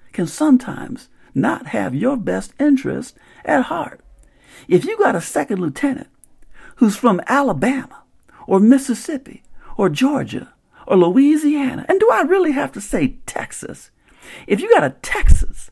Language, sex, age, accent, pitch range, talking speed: English, male, 50-69, American, 205-290 Hz, 140 wpm